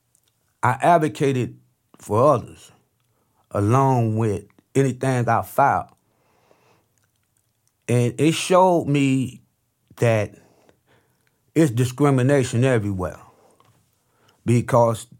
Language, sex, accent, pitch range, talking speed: English, male, American, 110-130 Hz, 70 wpm